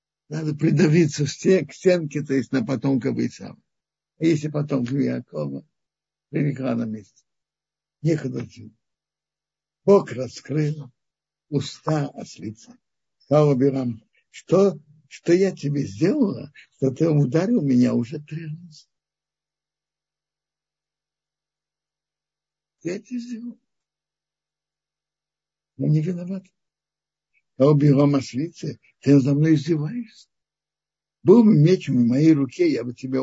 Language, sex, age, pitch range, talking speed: Russian, male, 60-79, 130-160 Hz, 105 wpm